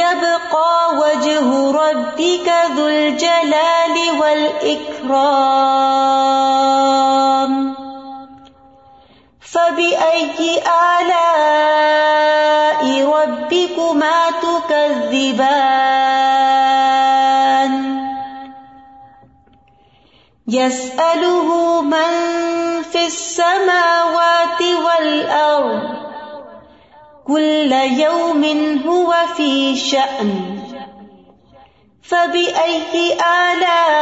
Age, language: 30-49, Urdu